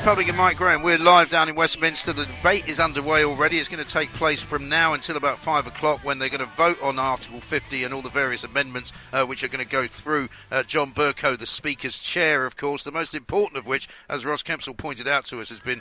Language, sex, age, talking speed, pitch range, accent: English, male, 50-69, 250 wpm, 130-160 Hz, British